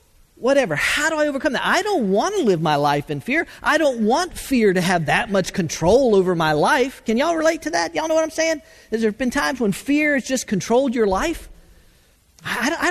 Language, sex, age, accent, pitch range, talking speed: English, male, 40-59, American, 155-250 Hz, 230 wpm